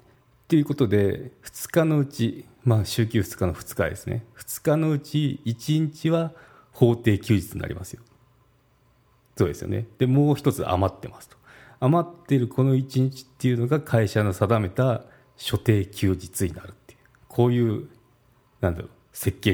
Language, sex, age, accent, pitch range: Japanese, male, 40-59, native, 95-125 Hz